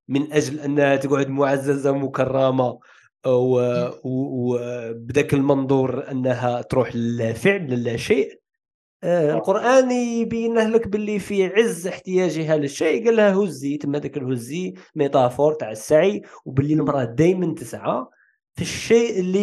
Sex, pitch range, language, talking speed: male, 130-175 Hz, Arabic, 110 wpm